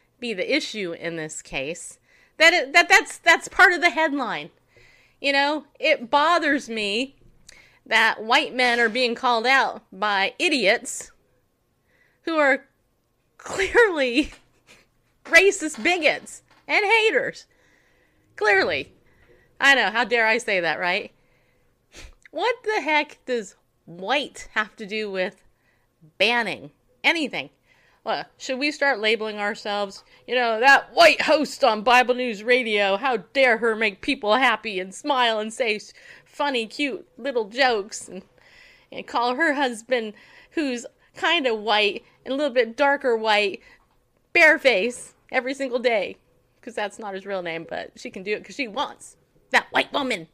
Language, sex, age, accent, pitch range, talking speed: English, female, 30-49, American, 210-295 Hz, 145 wpm